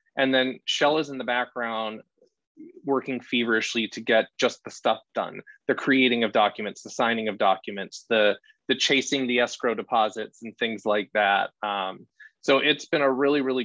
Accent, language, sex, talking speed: American, English, male, 165 wpm